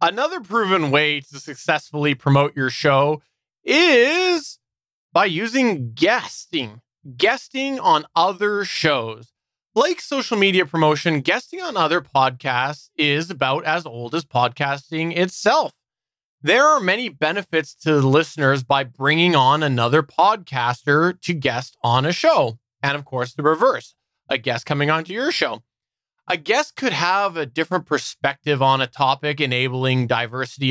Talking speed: 135 wpm